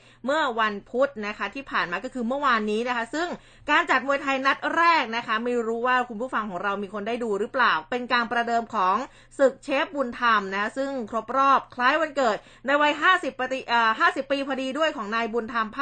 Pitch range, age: 220-270 Hz, 20-39